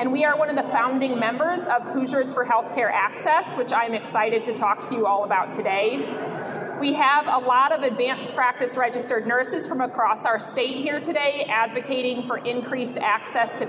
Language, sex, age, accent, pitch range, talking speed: English, female, 30-49, American, 230-280 Hz, 190 wpm